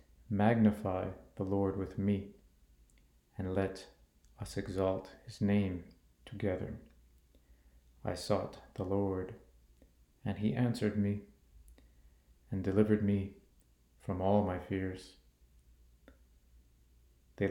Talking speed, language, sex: 95 wpm, English, male